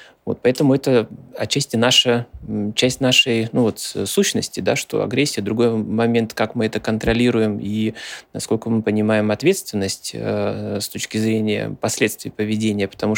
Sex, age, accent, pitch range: male, 20-39, native, 105-120 Hz